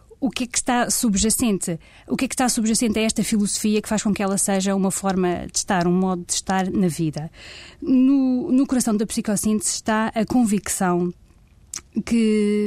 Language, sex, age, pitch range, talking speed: Portuguese, female, 20-39, 180-220 Hz, 190 wpm